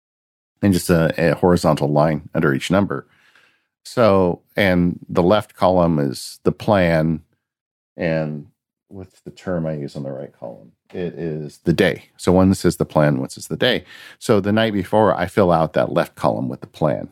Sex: male